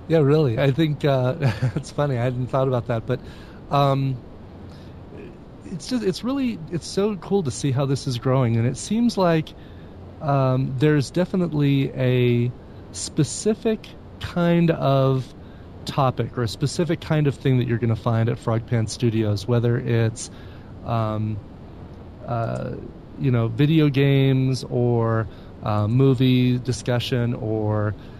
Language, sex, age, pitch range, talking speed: English, male, 30-49, 110-140 Hz, 140 wpm